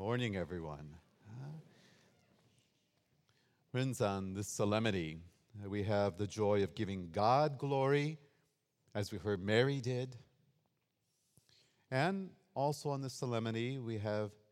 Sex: male